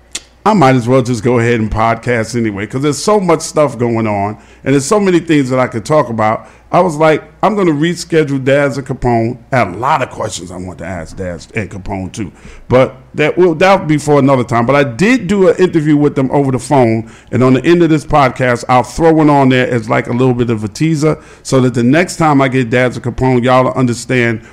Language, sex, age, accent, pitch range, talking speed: English, male, 50-69, American, 115-145 Hz, 250 wpm